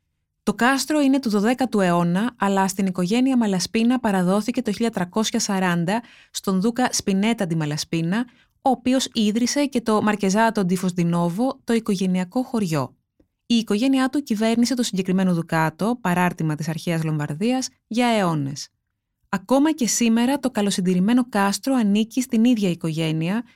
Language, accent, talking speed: Greek, native, 130 wpm